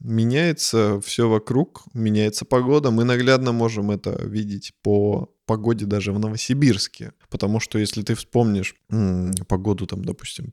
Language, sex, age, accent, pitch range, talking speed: Russian, male, 20-39, native, 105-140 Hz, 130 wpm